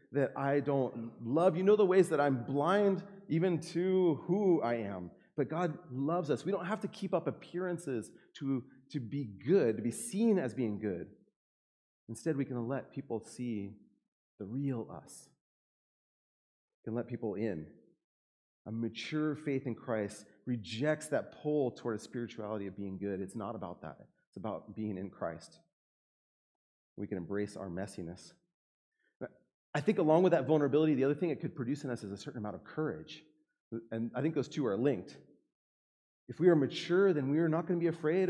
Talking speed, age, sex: 185 wpm, 30-49, male